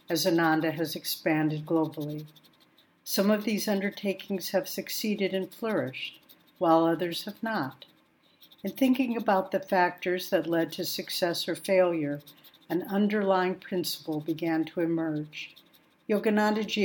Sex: female